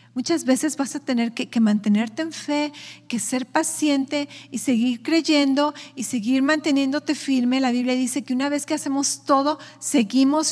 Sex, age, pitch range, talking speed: female, 40-59, 225-275 Hz, 170 wpm